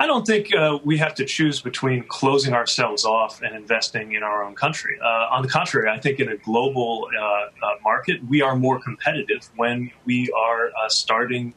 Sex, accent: male, American